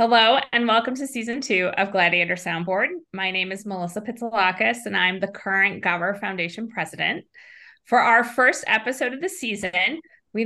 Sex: female